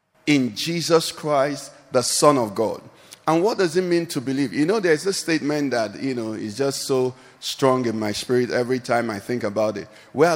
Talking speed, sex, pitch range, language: 210 wpm, male, 135-185 Hz, English